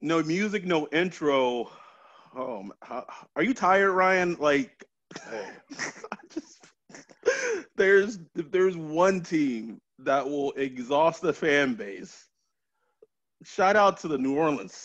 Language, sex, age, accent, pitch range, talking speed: English, male, 30-49, American, 125-180 Hz, 115 wpm